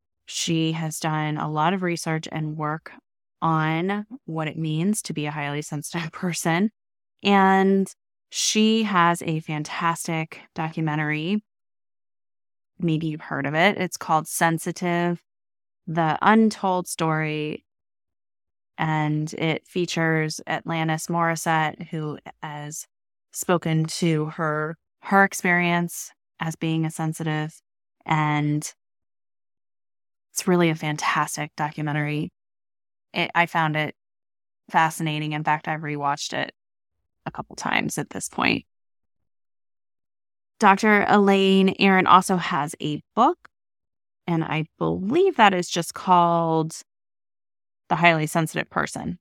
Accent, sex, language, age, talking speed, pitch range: American, female, English, 20-39, 110 wpm, 155-190 Hz